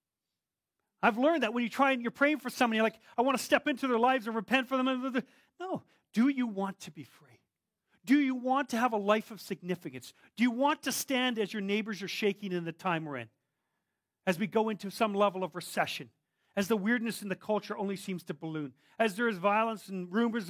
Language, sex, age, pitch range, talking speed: English, male, 40-59, 185-255 Hz, 230 wpm